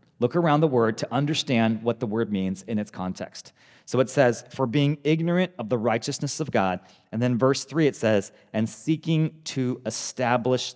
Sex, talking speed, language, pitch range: male, 190 wpm, English, 105-135 Hz